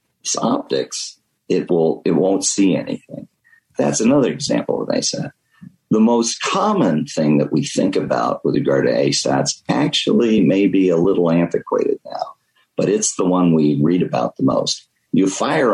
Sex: male